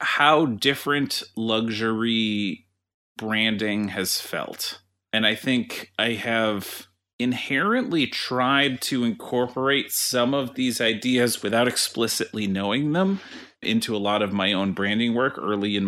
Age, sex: 30-49, male